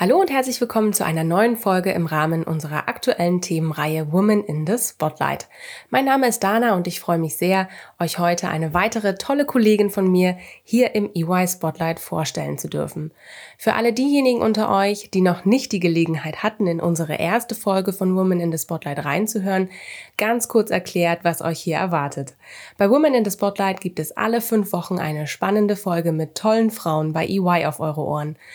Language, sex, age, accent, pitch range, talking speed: German, female, 20-39, German, 170-225 Hz, 185 wpm